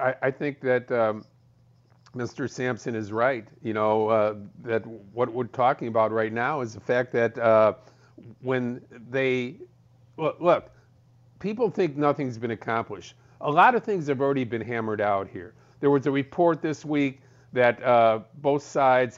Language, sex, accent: English, male, American